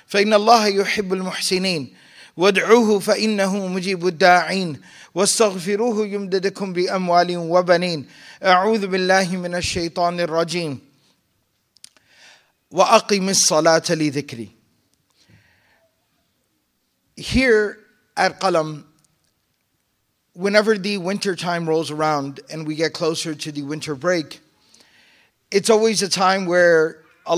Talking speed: 105 wpm